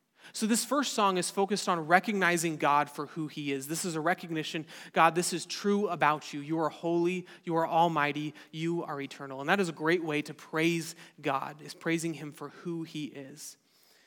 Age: 30-49